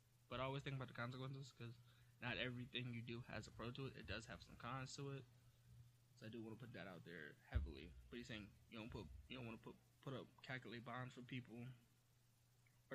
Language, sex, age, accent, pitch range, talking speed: English, male, 20-39, American, 115-125 Hz, 240 wpm